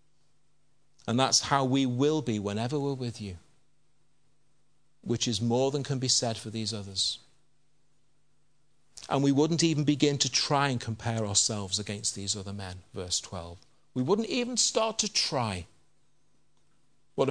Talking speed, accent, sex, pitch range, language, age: 150 wpm, British, male, 120-175 Hz, English, 50-69